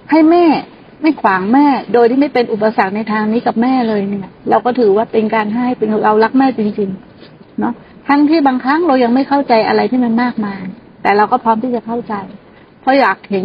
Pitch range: 215-255 Hz